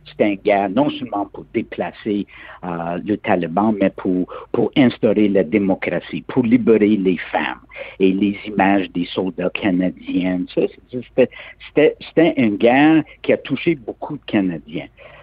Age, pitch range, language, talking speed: 60-79, 95-130 Hz, French, 145 wpm